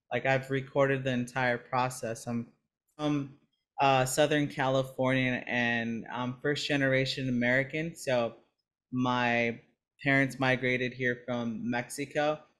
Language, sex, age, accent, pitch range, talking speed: English, male, 30-49, American, 125-140 Hz, 110 wpm